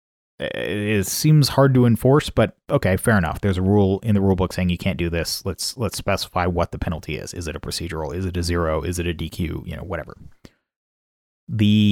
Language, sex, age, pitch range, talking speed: English, male, 30-49, 90-115 Hz, 215 wpm